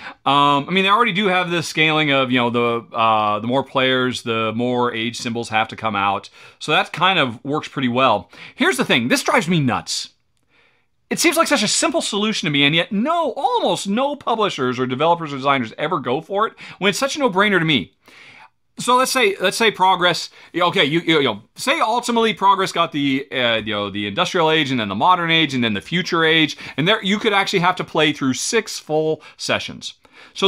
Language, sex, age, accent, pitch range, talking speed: English, male, 40-59, American, 135-205 Hz, 225 wpm